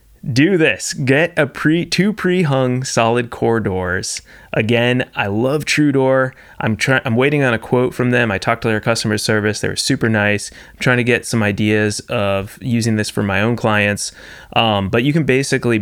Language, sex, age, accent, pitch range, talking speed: English, male, 20-39, American, 105-125 Hz, 195 wpm